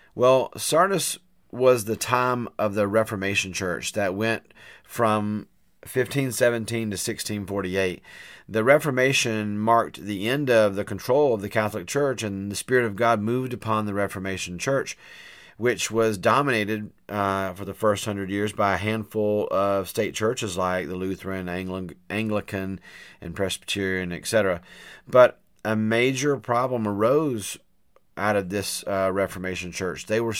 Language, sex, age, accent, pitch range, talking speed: English, male, 40-59, American, 100-115 Hz, 140 wpm